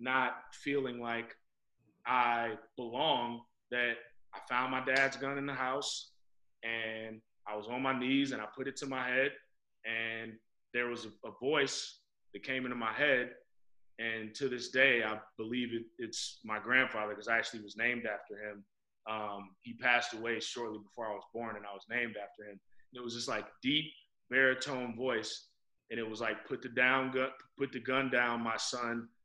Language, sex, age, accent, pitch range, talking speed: English, male, 20-39, American, 110-130 Hz, 190 wpm